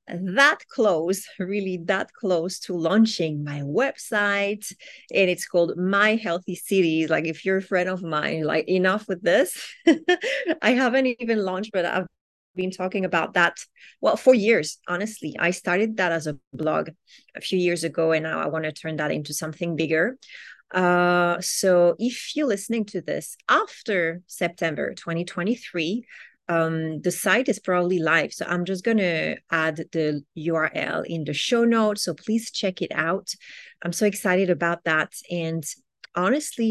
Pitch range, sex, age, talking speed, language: 165-210 Hz, female, 30-49, 165 wpm, English